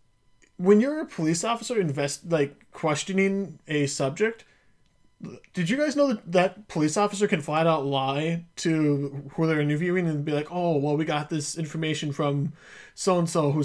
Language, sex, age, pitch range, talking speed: English, male, 20-39, 145-190 Hz, 175 wpm